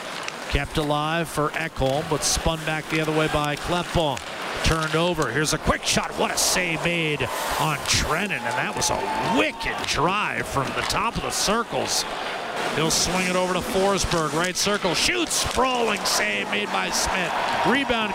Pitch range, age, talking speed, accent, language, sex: 180-225 Hz, 50-69, 170 wpm, American, English, male